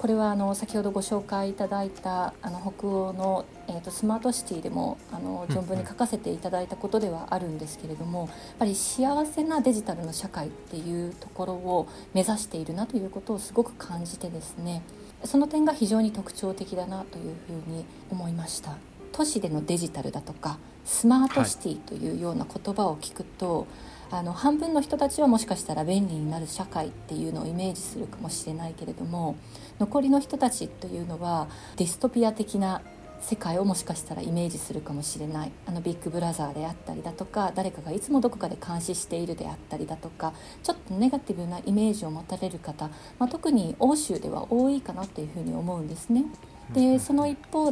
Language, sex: Japanese, female